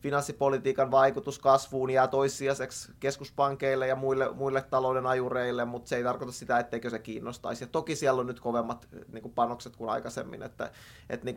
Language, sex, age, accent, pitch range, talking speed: Finnish, male, 20-39, native, 125-140 Hz, 170 wpm